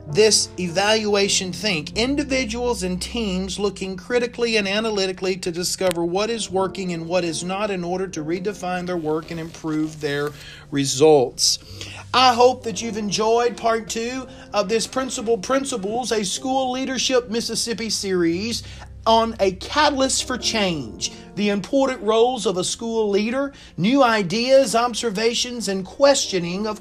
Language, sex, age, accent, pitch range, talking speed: English, male, 40-59, American, 180-235 Hz, 140 wpm